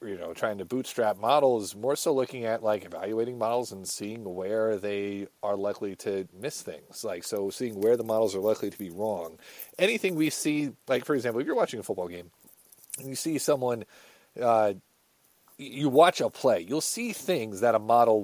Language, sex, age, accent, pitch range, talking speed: English, male, 40-59, American, 105-130 Hz, 195 wpm